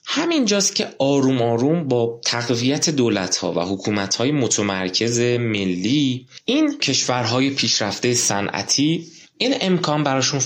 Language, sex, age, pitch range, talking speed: Persian, male, 20-39, 100-135 Hz, 105 wpm